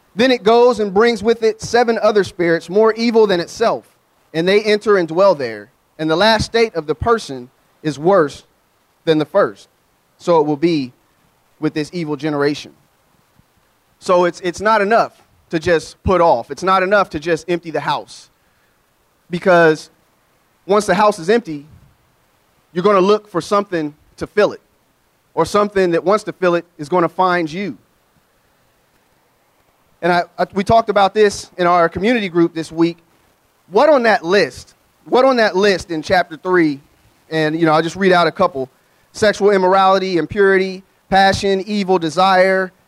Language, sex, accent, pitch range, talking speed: English, male, American, 160-200 Hz, 170 wpm